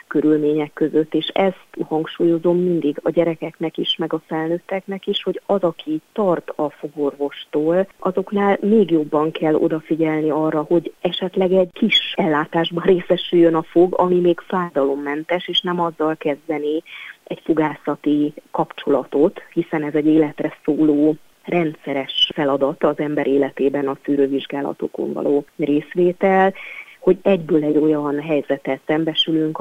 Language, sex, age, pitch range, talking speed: Hungarian, female, 30-49, 150-175 Hz, 130 wpm